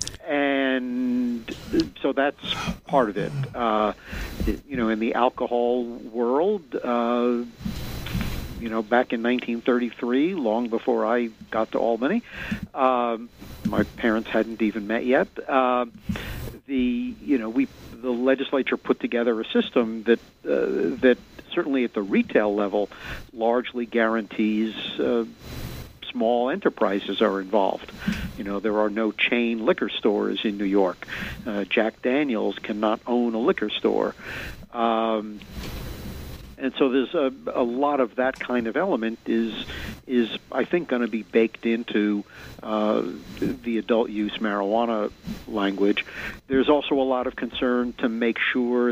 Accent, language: American, English